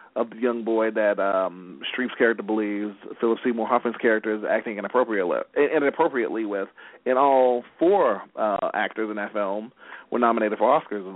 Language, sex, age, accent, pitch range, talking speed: English, male, 40-59, American, 110-125 Hz, 160 wpm